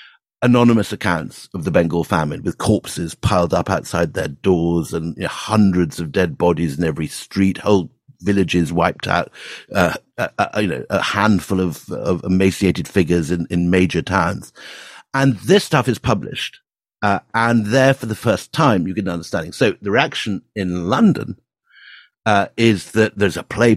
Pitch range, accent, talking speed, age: 90-110 Hz, British, 175 wpm, 50-69